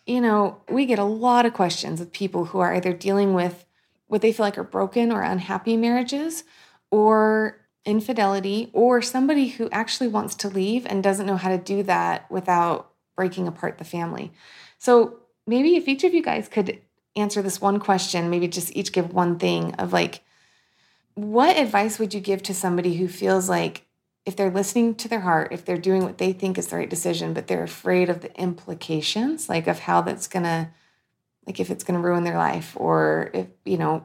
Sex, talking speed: female, 205 wpm